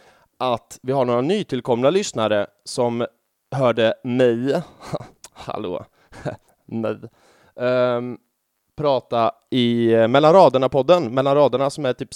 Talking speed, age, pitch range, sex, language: 110 wpm, 20-39, 115-140 Hz, male, English